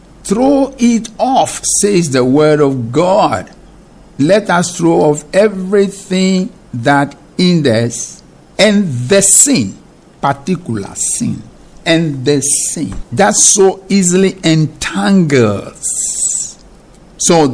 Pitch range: 110-155 Hz